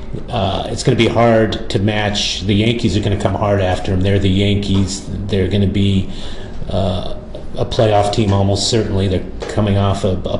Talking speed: 200 wpm